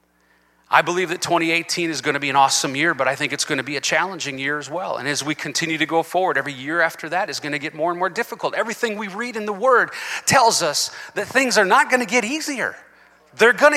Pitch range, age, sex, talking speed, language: 175-260 Hz, 30-49, male, 260 wpm, English